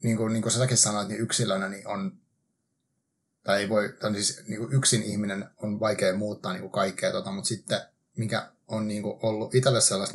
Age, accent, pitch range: 30-49, native, 105-130 Hz